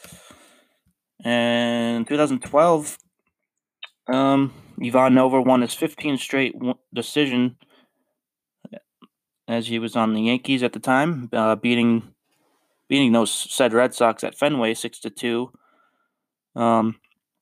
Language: English